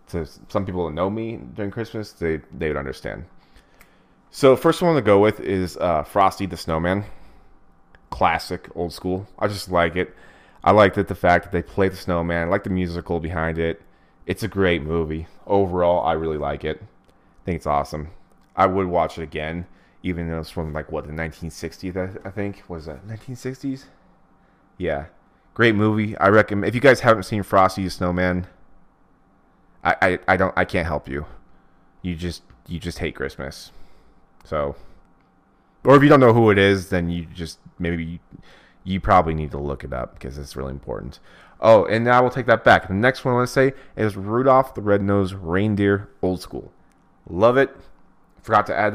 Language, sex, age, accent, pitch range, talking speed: English, male, 30-49, American, 85-100 Hz, 190 wpm